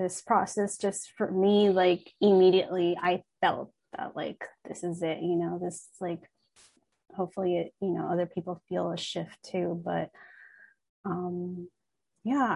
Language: English